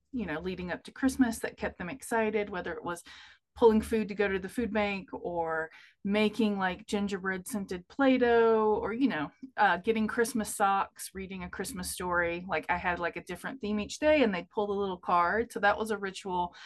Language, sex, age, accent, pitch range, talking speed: English, female, 30-49, American, 180-225 Hz, 215 wpm